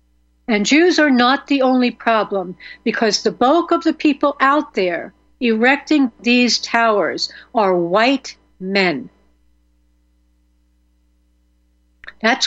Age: 60-79